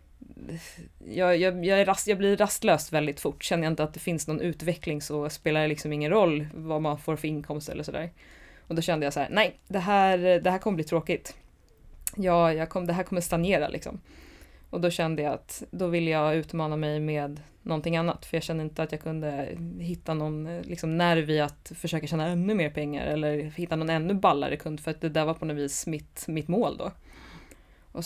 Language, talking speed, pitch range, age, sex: Swedish, 215 wpm, 150-180 Hz, 20-39, female